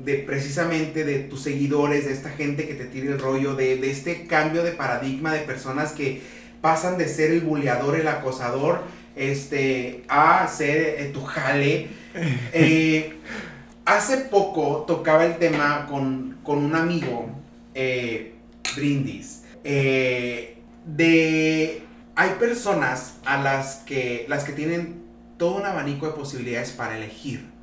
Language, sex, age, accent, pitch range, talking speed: Spanish, male, 30-49, Mexican, 130-155 Hz, 140 wpm